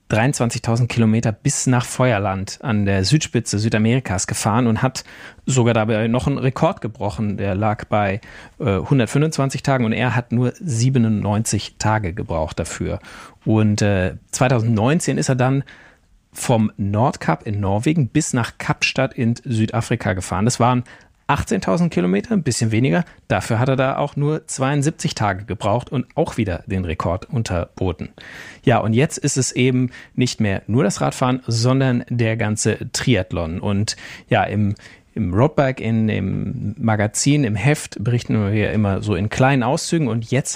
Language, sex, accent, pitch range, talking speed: German, male, German, 110-135 Hz, 155 wpm